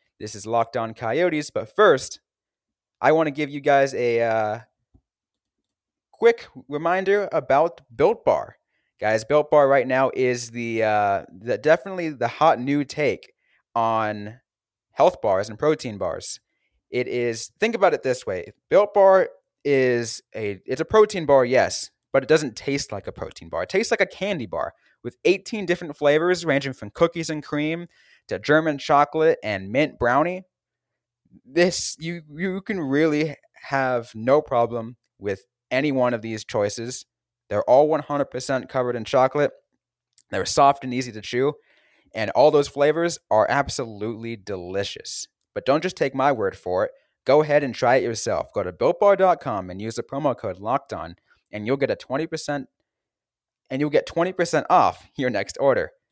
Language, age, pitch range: English, 20-39, 120-160 Hz